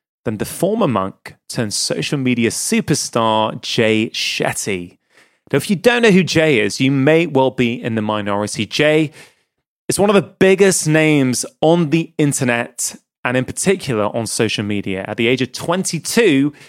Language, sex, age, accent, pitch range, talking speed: English, male, 30-49, British, 120-165 Hz, 165 wpm